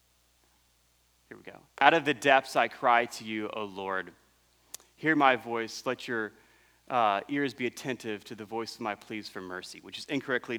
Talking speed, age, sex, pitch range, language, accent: 185 wpm, 30-49, male, 105-150 Hz, English, American